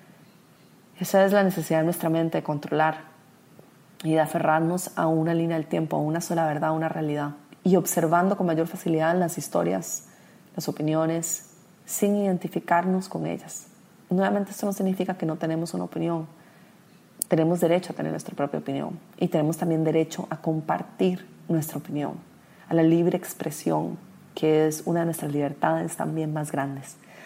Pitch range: 155-185 Hz